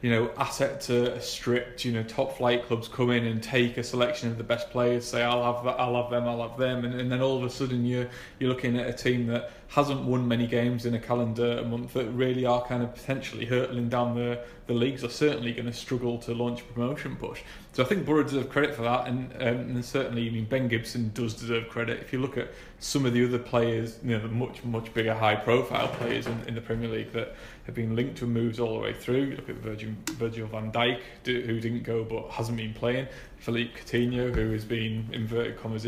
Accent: British